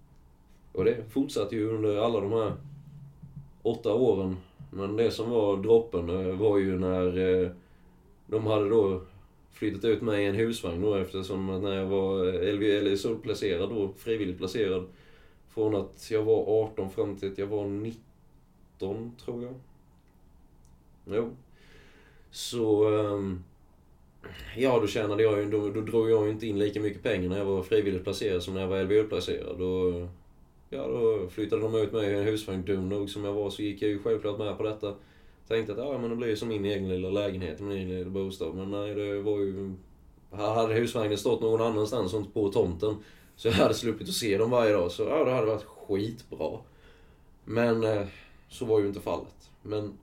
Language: Swedish